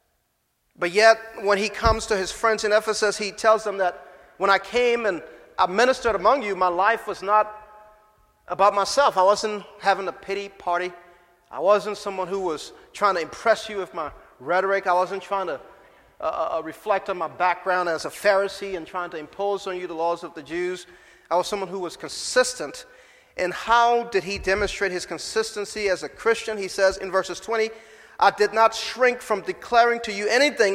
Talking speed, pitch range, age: 195 wpm, 185-220 Hz, 40-59